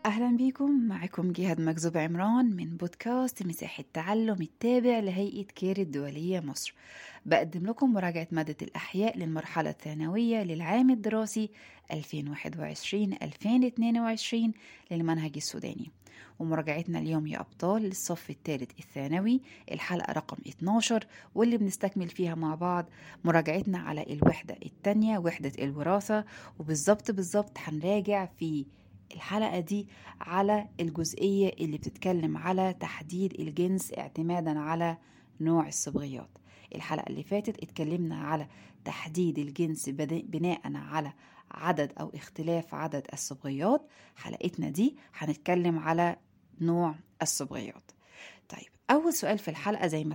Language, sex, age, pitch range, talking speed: Arabic, female, 20-39, 160-210 Hz, 110 wpm